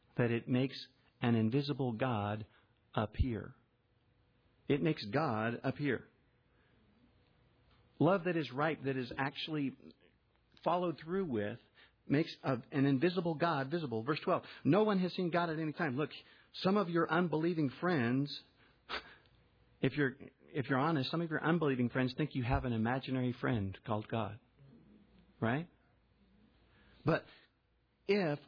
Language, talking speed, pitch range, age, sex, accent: English, 135 wpm, 120-160 Hz, 50-69, male, American